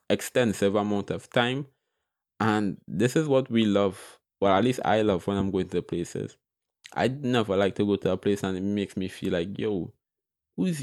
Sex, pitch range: male, 95-120 Hz